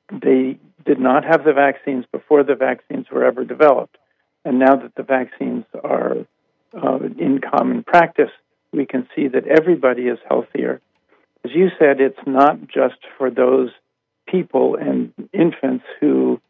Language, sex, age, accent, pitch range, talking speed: English, male, 50-69, American, 130-150 Hz, 150 wpm